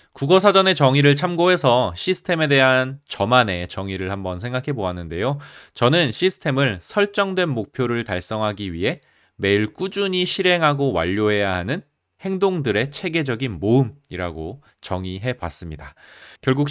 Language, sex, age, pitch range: Korean, male, 20-39, 95-145 Hz